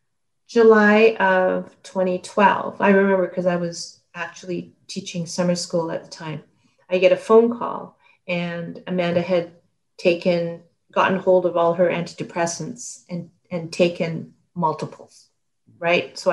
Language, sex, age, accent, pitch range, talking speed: English, female, 40-59, American, 165-190 Hz, 130 wpm